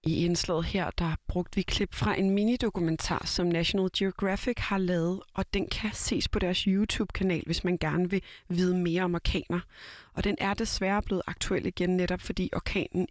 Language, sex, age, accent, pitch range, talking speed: Danish, female, 30-49, native, 170-200 Hz, 185 wpm